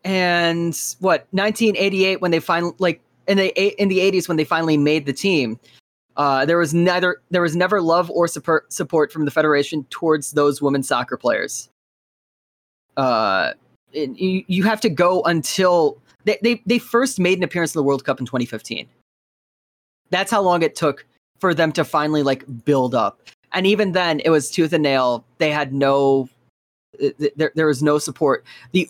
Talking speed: 175 wpm